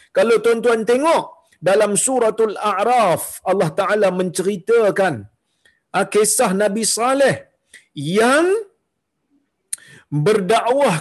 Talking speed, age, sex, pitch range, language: 75 wpm, 40-59, male, 200-250 Hz, Malayalam